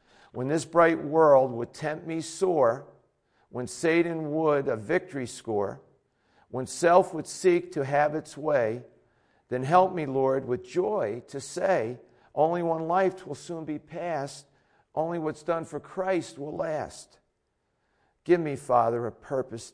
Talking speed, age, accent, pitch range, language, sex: 150 wpm, 50-69, American, 125-155 Hz, English, male